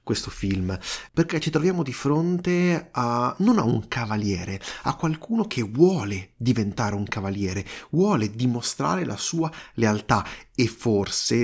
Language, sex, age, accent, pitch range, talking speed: Italian, male, 30-49, native, 110-155 Hz, 135 wpm